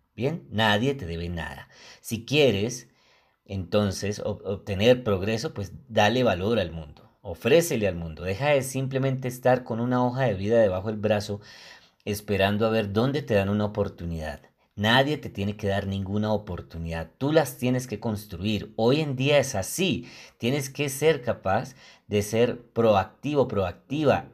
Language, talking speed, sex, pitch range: Spanish, 155 wpm, male, 95-115 Hz